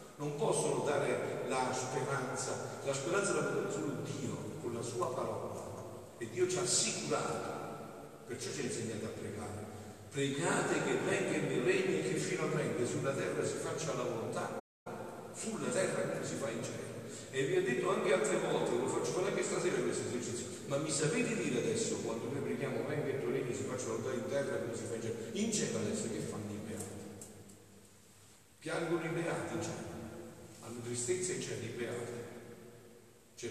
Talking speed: 185 wpm